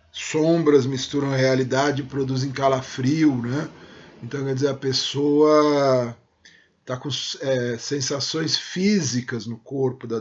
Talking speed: 125 wpm